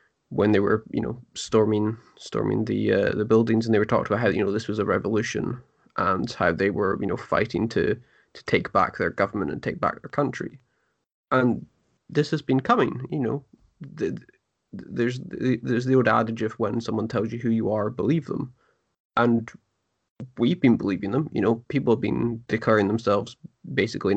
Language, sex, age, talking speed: English, male, 20-39, 195 wpm